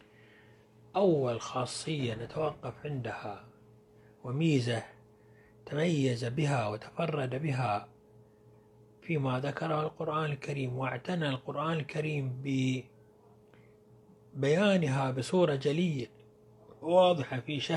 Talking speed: 70 wpm